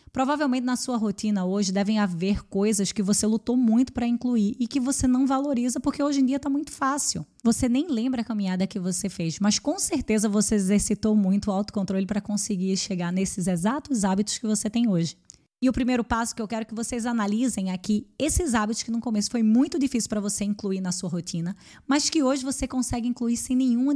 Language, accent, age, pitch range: Portuguese, Brazilian, 10-29, 200-245 Hz